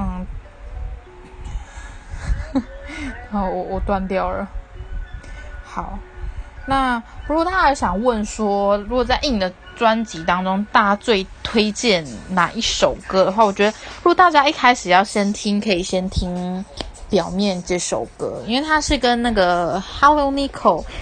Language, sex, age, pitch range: Chinese, female, 20-39, 185-255 Hz